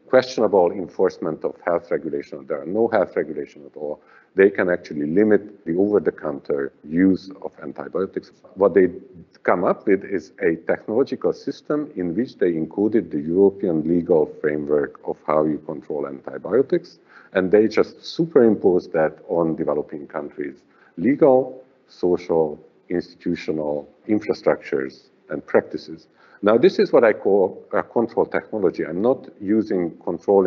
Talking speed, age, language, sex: 140 wpm, 50-69, English, male